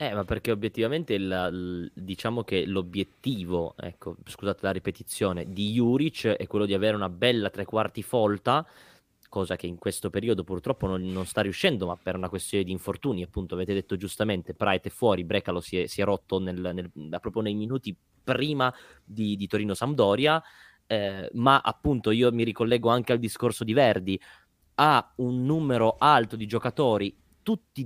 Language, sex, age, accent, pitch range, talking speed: Italian, male, 20-39, native, 95-125 Hz, 170 wpm